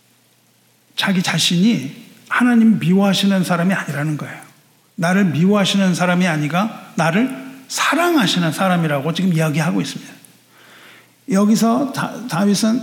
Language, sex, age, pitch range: Korean, male, 50-69, 175-235 Hz